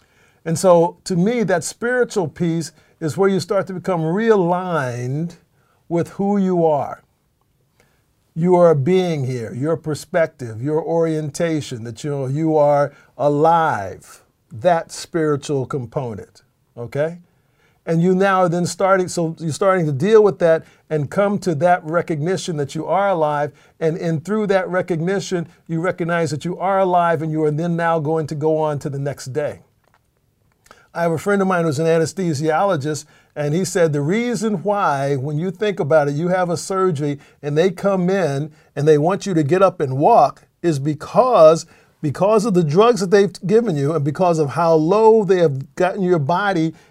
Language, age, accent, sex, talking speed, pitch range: English, 50-69, American, male, 180 wpm, 150-185 Hz